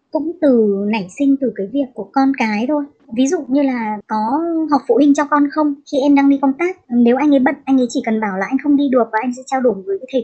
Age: 20-39